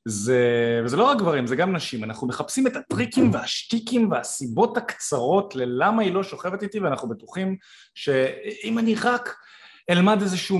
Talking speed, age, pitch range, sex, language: 155 wpm, 30-49, 135-210 Hz, male, Hebrew